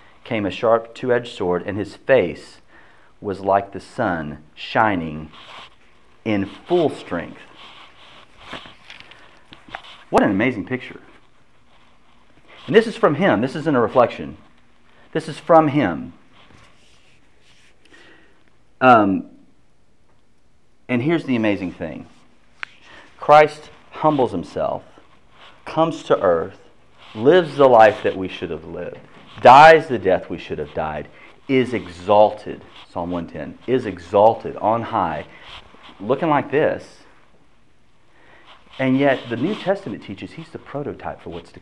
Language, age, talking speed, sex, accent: English, 40-59, 120 wpm, male, American